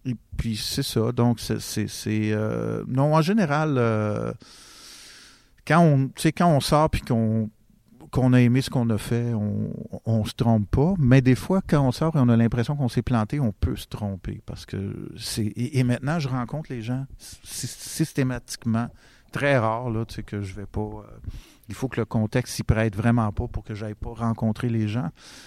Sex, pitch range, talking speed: male, 110-130 Hz, 205 wpm